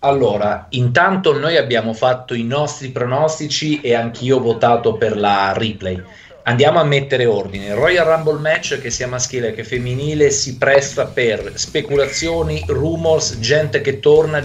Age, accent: 30-49, native